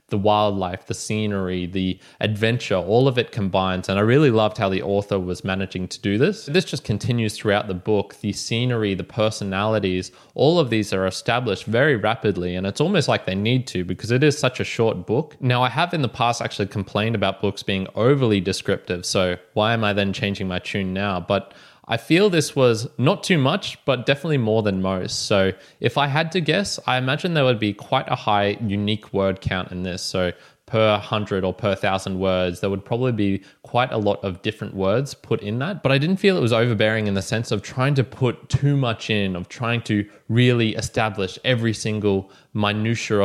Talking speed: 210 wpm